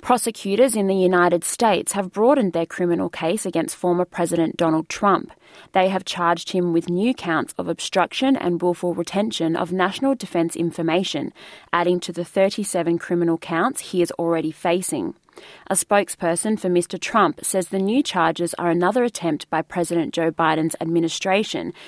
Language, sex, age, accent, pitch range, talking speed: English, female, 20-39, Australian, 170-200 Hz, 160 wpm